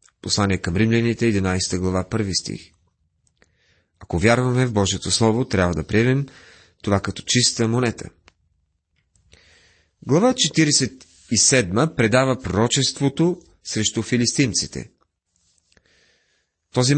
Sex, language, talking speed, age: male, Bulgarian, 90 wpm, 30-49